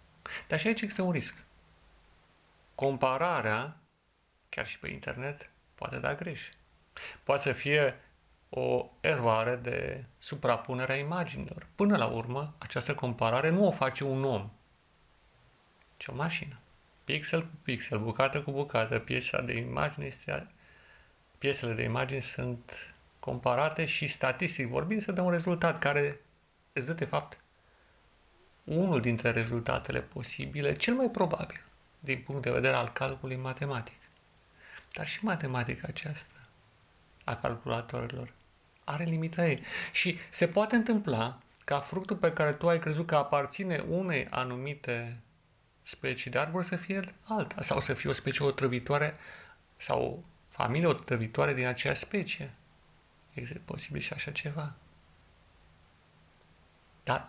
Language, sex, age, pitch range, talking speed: Romanian, male, 40-59, 120-165 Hz, 135 wpm